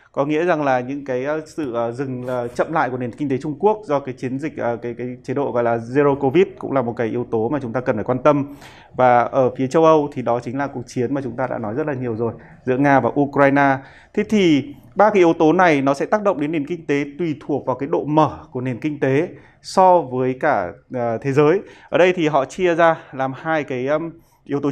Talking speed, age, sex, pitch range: 255 wpm, 20-39, male, 130-160 Hz